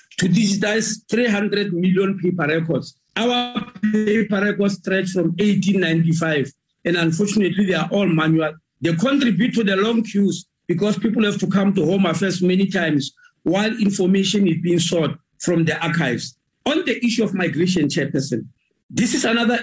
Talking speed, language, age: 155 wpm, English, 50-69